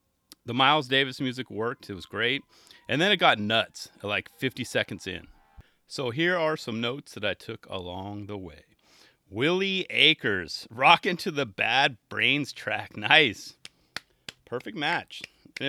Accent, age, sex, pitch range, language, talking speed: American, 30-49, male, 110-155 Hz, English, 155 wpm